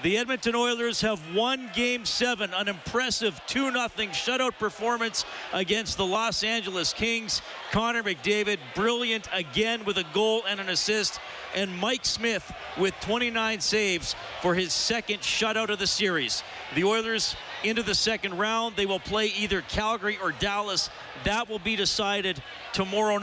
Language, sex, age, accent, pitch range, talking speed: English, male, 40-59, American, 165-215 Hz, 155 wpm